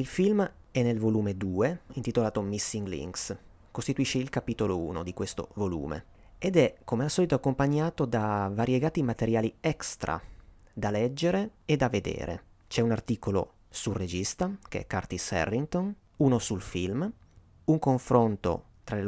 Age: 30-49